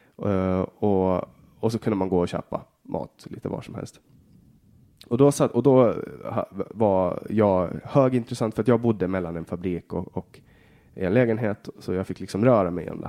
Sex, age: male, 20-39